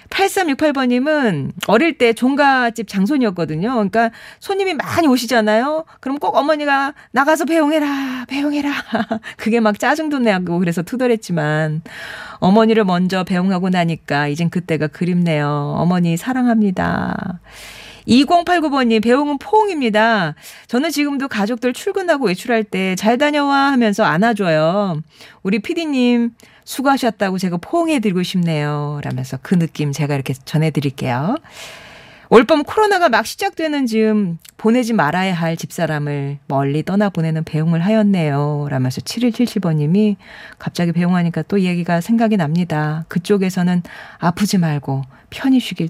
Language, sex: Korean, female